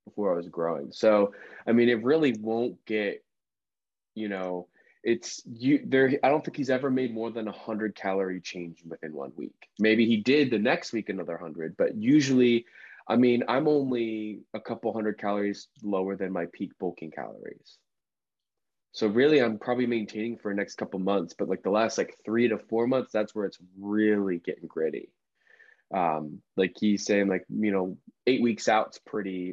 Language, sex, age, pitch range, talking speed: English, male, 20-39, 95-115 Hz, 185 wpm